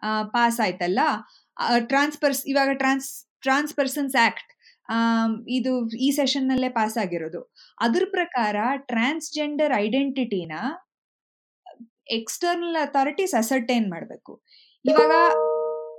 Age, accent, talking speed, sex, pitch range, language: 20-39, native, 85 wpm, female, 235-300 Hz, Kannada